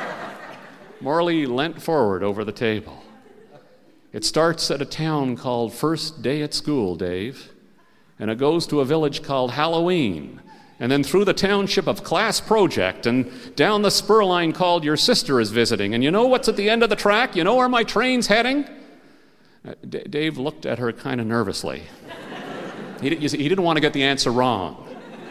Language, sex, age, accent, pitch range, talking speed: English, male, 50-69, American, 125-180 Hz, 180 wpm